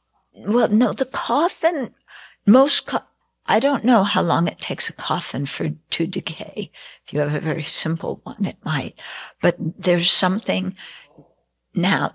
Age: 60-79